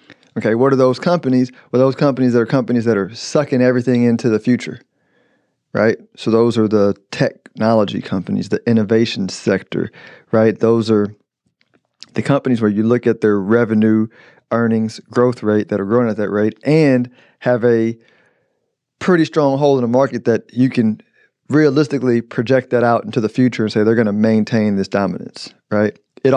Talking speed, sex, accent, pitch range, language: 175 wpm, male, American, 110-125 Hz, English